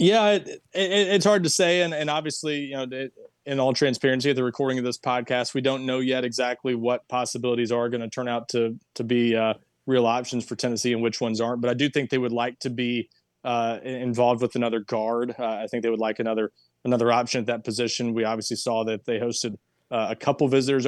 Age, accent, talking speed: 20-39, American, 235 wpm